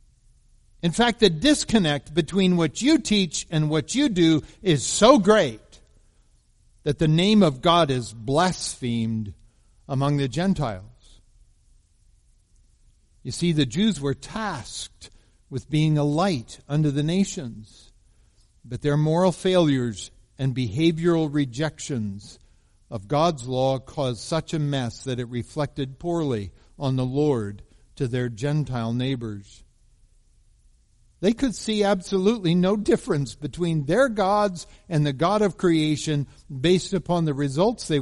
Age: 60-79